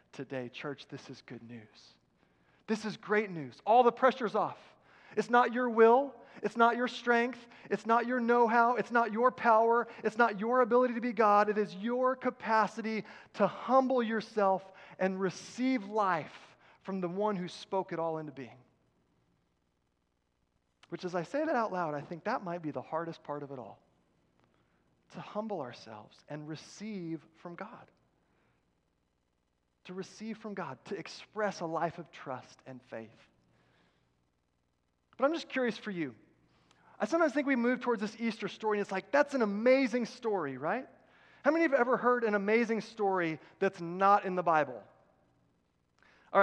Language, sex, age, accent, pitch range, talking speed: English, male, 30-49, American, 145-225 Hz, 170 wpm